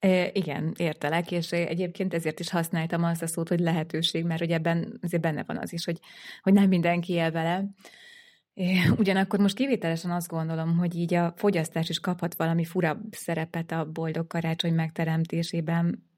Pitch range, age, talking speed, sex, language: 165-195 Hz, 20-39, 170 wpm, female, Hungarian